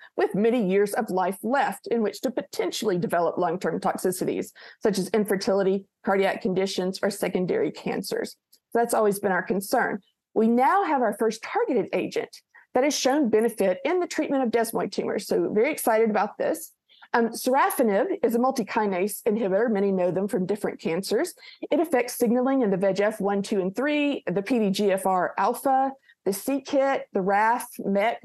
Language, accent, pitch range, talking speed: English, American, 205-275 Hz, 165 wpm